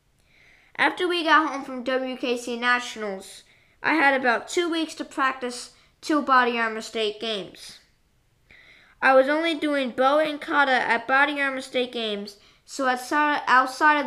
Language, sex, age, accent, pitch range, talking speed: English, female, 20-39, American, 230-280 Hz, 145 wpm